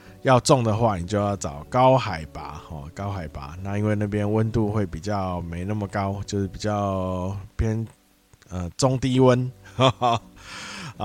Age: 20-39